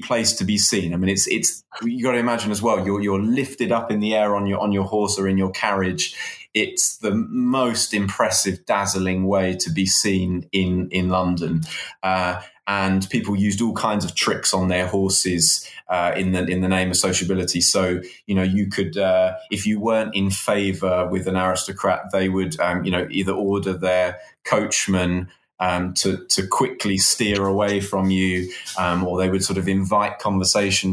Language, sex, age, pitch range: English, male, 20-39, 95-105 Hz